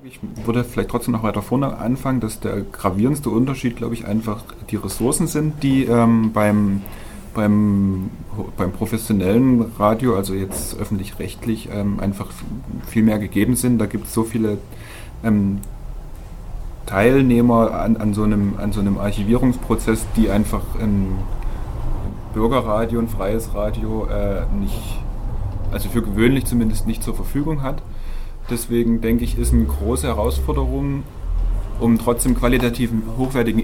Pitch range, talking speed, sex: 105-120 Hz, 140 wpm, male